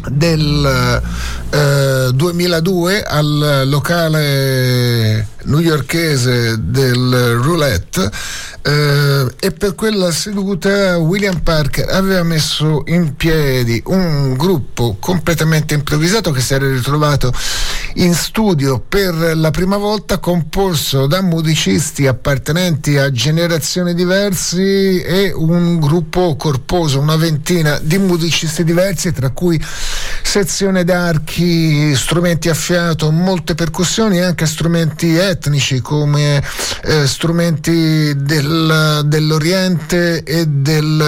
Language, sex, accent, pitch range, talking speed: Italian, male, native, 140-175 Hz, 100 wpm